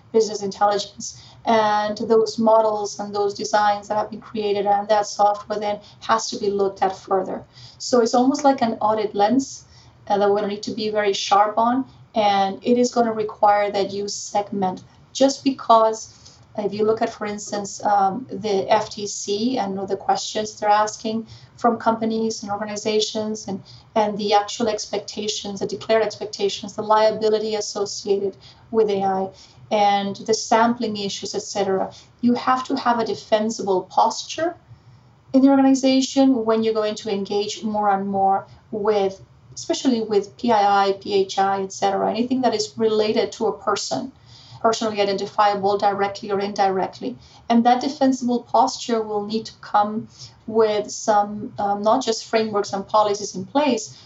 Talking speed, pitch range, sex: 155 wpm, 200-225 Hz, female